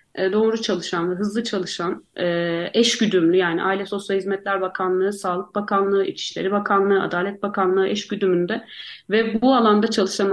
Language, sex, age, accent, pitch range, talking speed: Turkish, female, 40-59, native, 180-225 Hz, 140 wpm